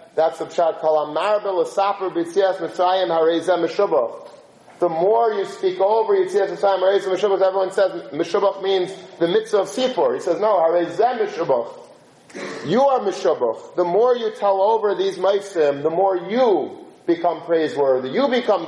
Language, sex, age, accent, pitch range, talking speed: English, male, 40-59, American, 175-220 Hz, 135 wpm